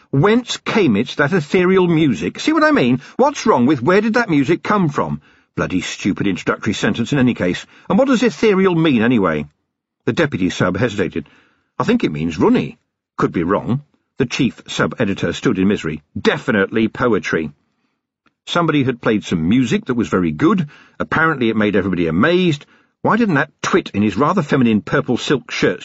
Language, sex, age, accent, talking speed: English, male, 50-69, British, 180 wpm